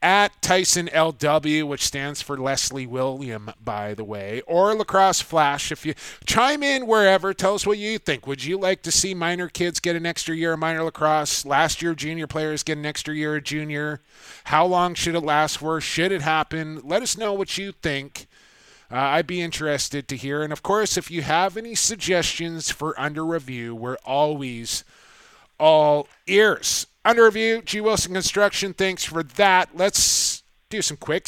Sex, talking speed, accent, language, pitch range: male, 185 wpm, American, English, 145-180 Hz